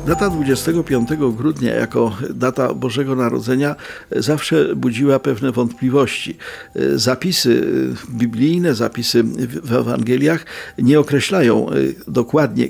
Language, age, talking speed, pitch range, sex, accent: Polish, 50-69, 90 wpm, 120-150 Hz, male, native